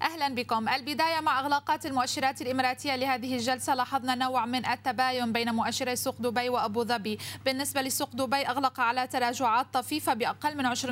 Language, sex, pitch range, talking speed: Arabic, female, 240-270 Hz, 155 wpm